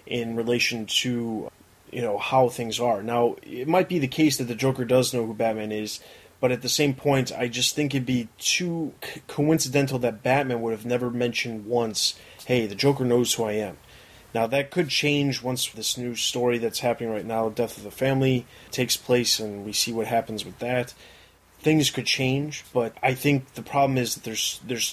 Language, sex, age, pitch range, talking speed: English, male, 20-39, 115-130 Hz, 205 wpm